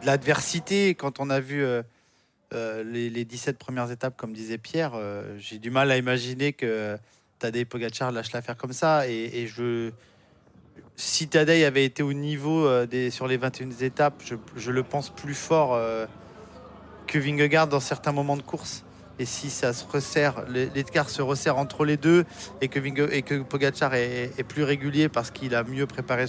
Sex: male